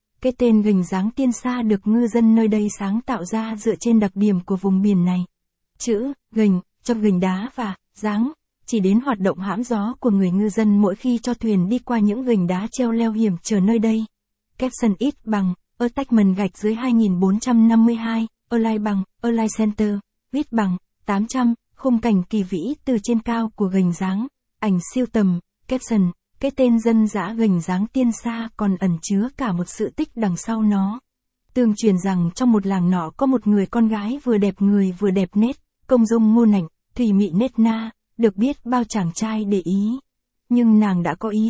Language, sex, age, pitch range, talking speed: Vietnamese, female, 20-39, 200-235 Hz, 205 wpm